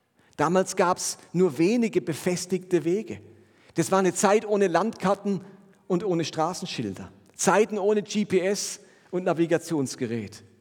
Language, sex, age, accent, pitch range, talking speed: German, male, 40-59, German, 155-195 Hz, 120 wpm